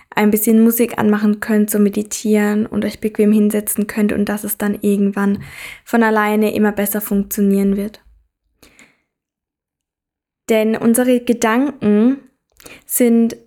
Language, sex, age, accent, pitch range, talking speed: German, female, 20-39, German, 210-230 Hz, 120 wpm